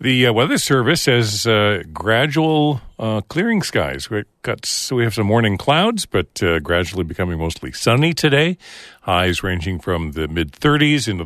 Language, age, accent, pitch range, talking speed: English, 50-69, American, 85-115 Hz, 150 wpm